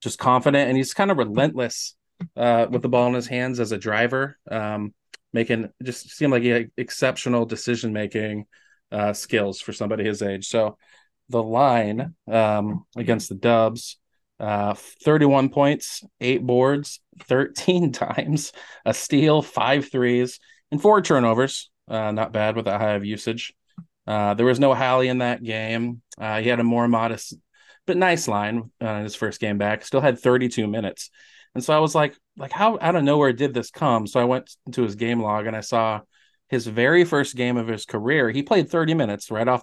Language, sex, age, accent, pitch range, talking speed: English, male, 20-39, American, 110-135 Hz, 190 wpm